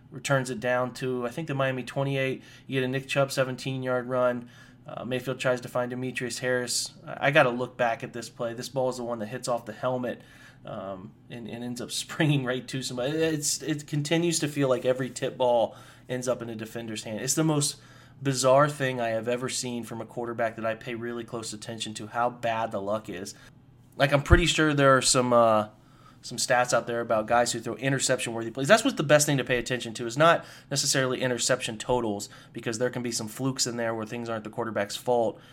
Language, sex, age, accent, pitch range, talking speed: English, male, 20-39, American, 115-135 Hz, 230 wpm